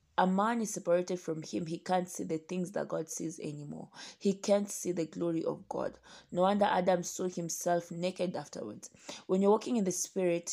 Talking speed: 200 wpm